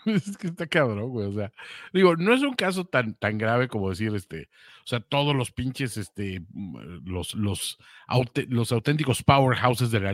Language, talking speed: Spanish, 190 wpm